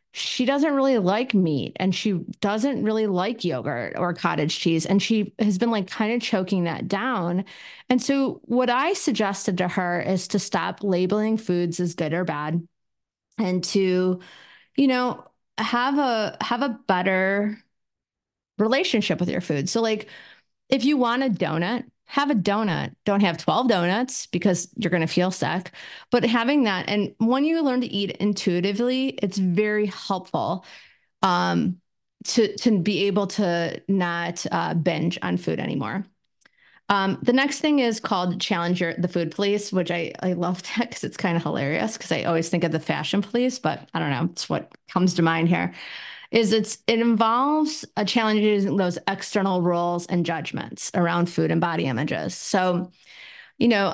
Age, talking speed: 30-49, 175 wpm